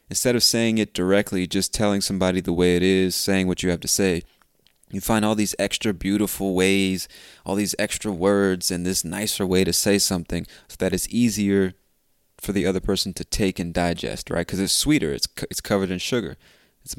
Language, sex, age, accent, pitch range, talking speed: English, male, 20-39, American, 85-100 Hz, 200 wpm